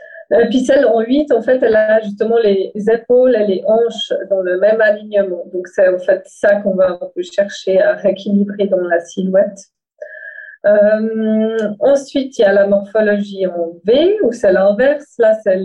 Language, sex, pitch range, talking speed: French, female, 195-275 Hz, 185 wpm